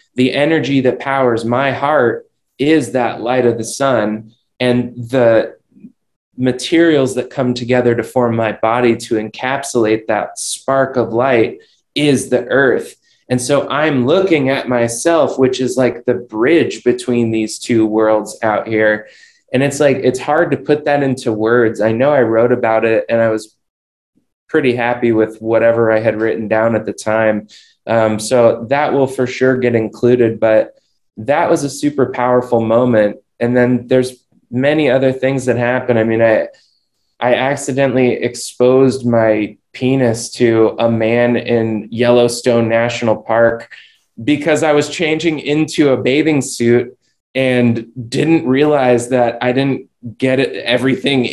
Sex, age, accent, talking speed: male, 20-39, American, 155 wpm